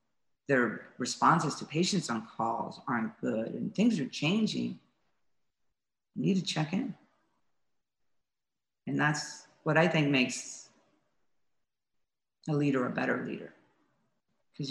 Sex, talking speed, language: female, 120 wpm, English